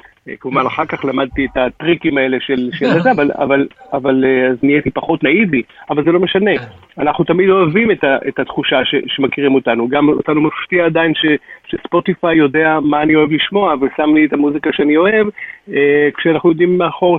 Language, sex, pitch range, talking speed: Hebrew, male, 135-155 Hz, 180 wpm